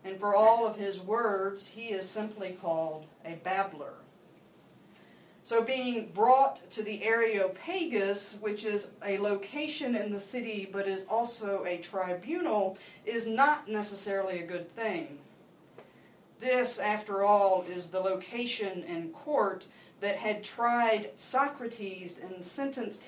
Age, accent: 40-59, American